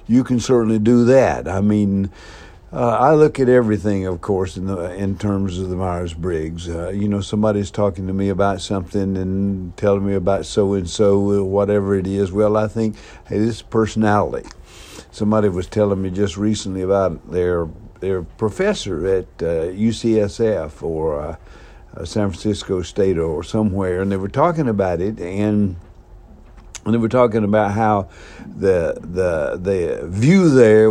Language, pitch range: English, 95-110 Hz